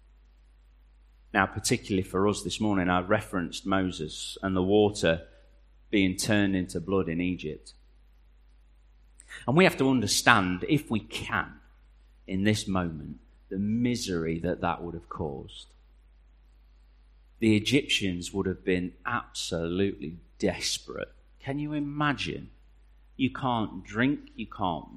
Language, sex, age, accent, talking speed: English, male, 30-49, British, 125 wpm